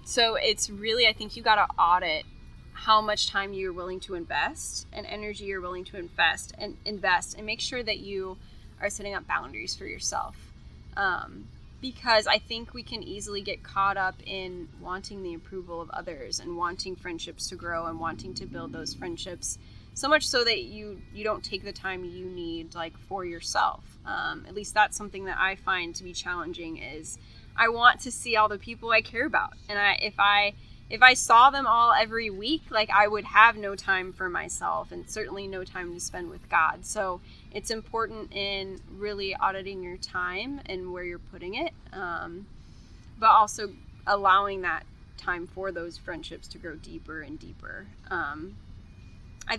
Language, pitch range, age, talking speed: English, 180-215 Hz, 10-29, 190 wpm